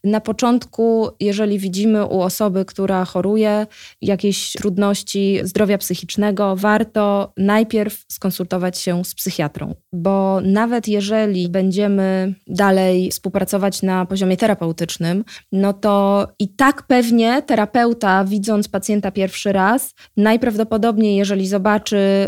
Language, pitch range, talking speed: Polish, 185-210 Hz, 110 wpm